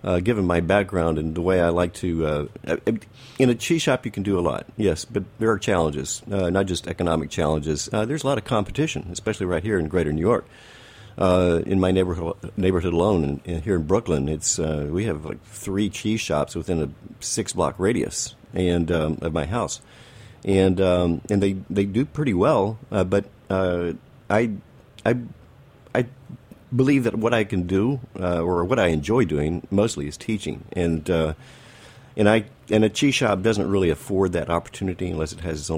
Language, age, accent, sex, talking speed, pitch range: English, 50-69, American, male, 200 wpm, 80-105 Hz